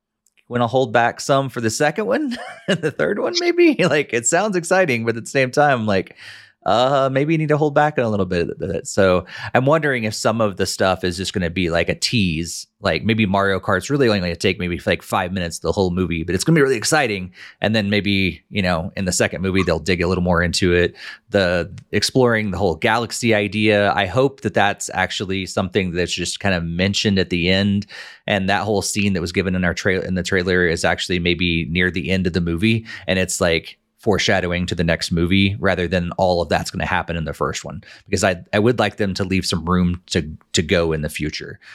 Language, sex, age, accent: English, male, 30-49, American